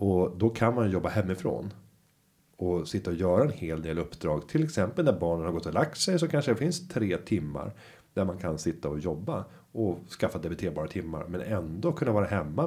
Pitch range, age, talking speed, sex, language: 90-120 Hz, 30-49, 210 wpm, male, Swedish